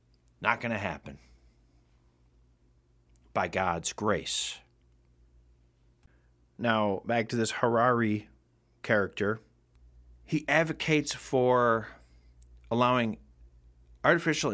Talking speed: 75 wpm